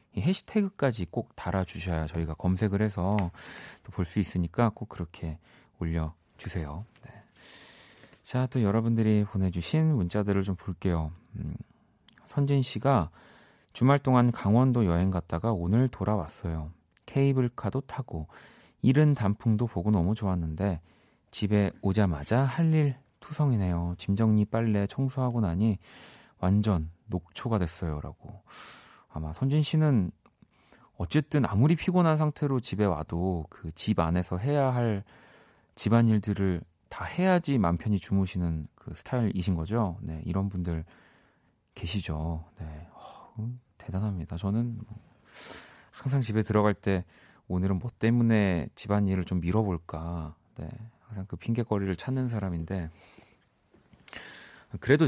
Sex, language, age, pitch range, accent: male, Korean, 30-49, 90-120 Hz, native